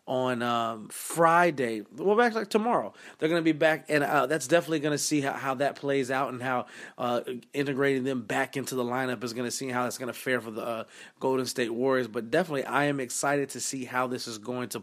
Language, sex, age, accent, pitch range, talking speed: English, male, 30-49, American, 120-145 Hz, 245 wpm